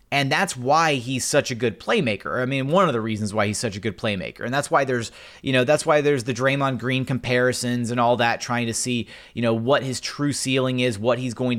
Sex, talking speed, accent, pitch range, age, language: male, 255 wpm, American, 120-145 Hz, 30-49, English